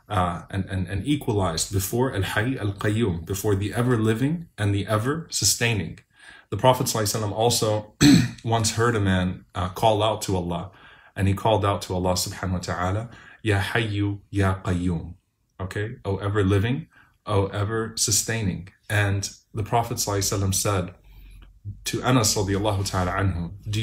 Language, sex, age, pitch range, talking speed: English, male, 30-49, 100-115 Hz, 160 wpm